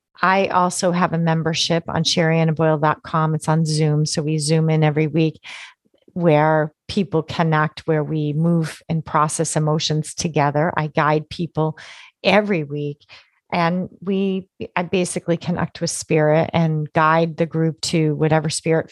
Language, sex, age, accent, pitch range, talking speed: English, female, 30-49, American, 155-185 Hz, 145 wpm